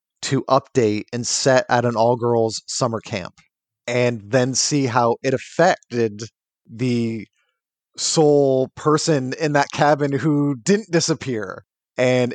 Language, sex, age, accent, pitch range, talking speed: English, male, 30-49, American, 120-150 Hz, 120 wpm